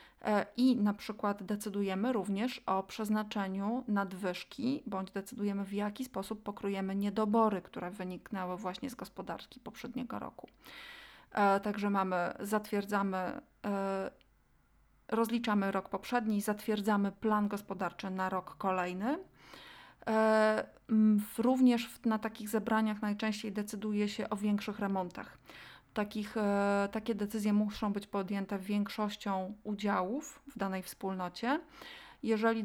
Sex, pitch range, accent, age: female, 195-225 Hz, native, 30-49